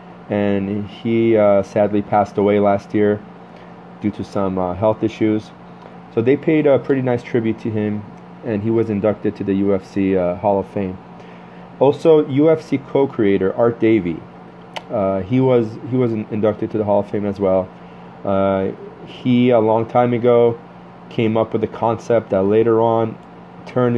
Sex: male